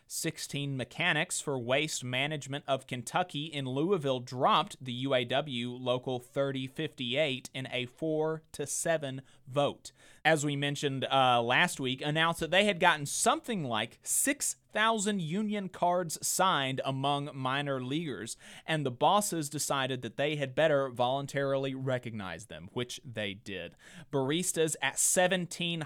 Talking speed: 130 wpm